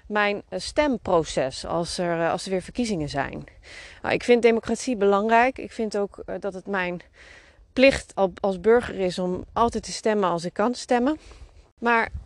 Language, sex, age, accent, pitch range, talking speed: Dutch, female, 30-49, Dutch, 155-230 Hz, 160 wpm